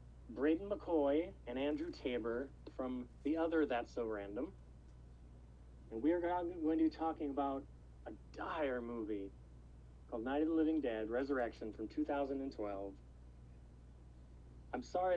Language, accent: English, American